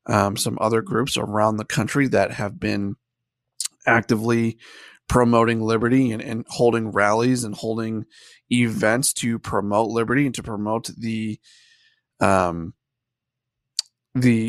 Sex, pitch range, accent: male, 115-135 Hz, American